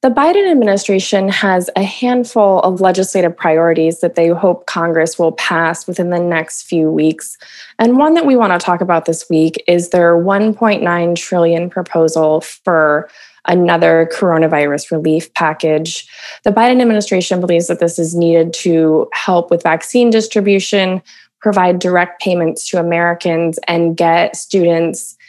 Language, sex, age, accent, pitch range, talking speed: English, female, 20-39, American, 165-210 Hz, 145 wpm